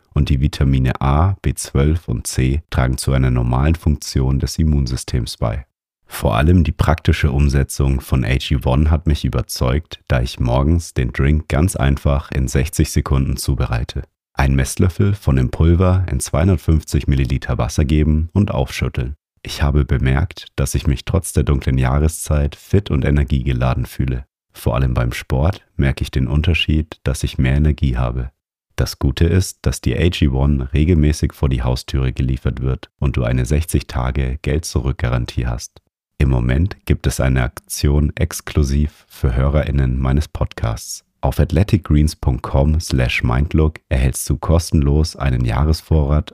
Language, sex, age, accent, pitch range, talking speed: German, male, 40-59, German, 65-80 Hz, 145 wpm